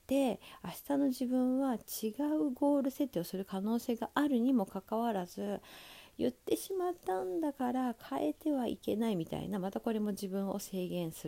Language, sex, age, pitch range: Japanese, female, 50-69, 185-275 Hz